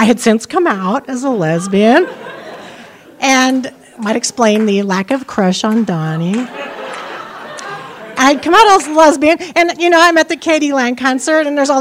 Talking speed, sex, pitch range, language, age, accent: 180 wpm, female, 175-260 Hz, English, 50-69, American